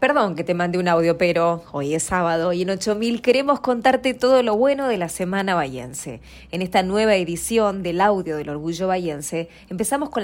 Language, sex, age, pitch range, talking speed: English, female, 20-39, 170-215 Hz, 195 wpm